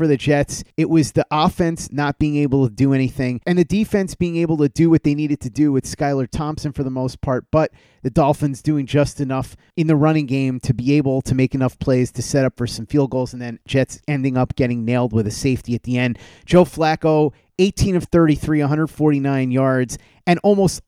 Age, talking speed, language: 30-49, 225 wpm, English